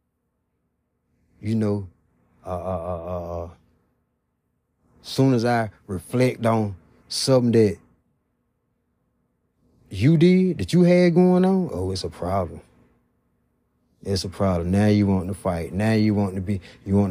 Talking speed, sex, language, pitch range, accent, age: 140 wpm, male, English, 80-105 Hz, American, 30-49